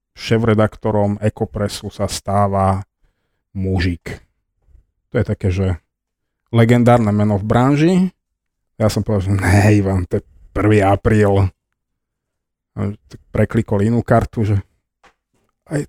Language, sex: Slovak, male